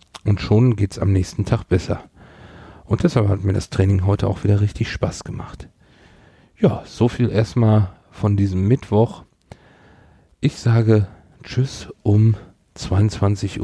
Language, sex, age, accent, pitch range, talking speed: German, male, 50-69, German, 95-115 Hz, 135 wpm